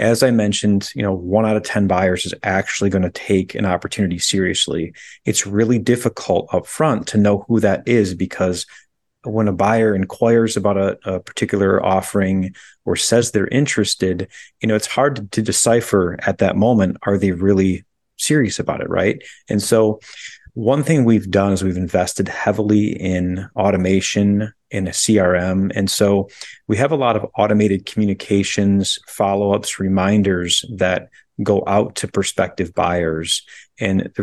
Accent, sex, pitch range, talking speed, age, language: American, male, 95-110 Hz, 165 wpm, 30-49, English